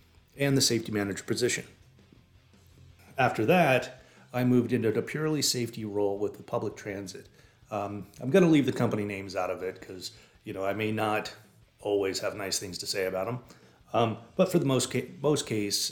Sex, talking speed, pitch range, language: male, 190 wpm, 100-120 Hz, English